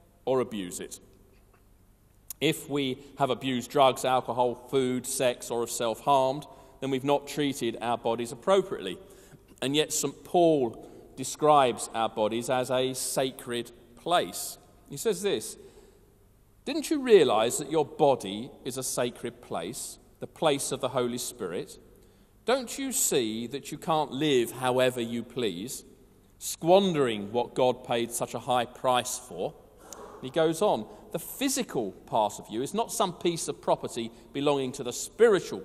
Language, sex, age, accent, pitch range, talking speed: English, male, 40-59, British, 120-155 Hz, 150 wpm